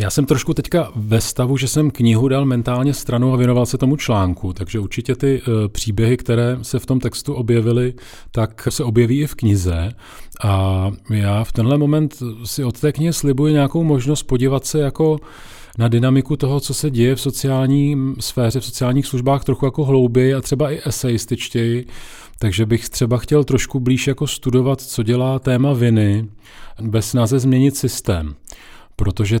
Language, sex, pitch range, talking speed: Czech, male, 115-135 Hz, 170 wpm